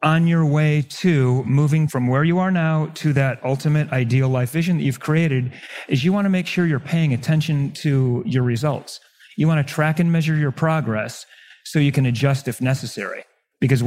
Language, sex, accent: English, male, American